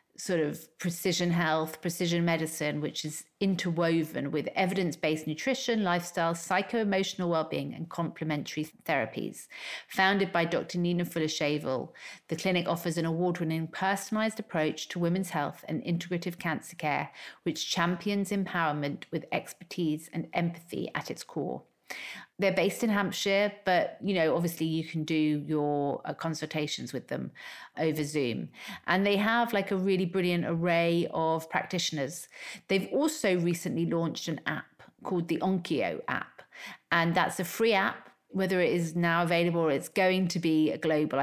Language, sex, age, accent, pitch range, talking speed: English, female, 40-59, British, 155-185 Hz, 150 wpm